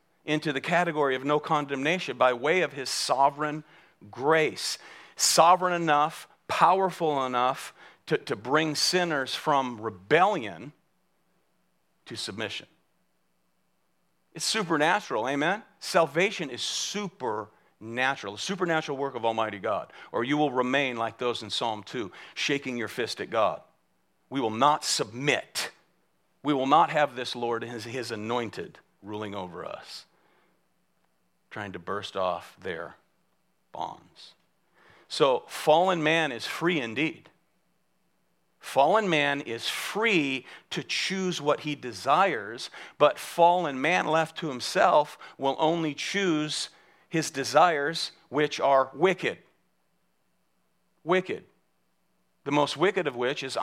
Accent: American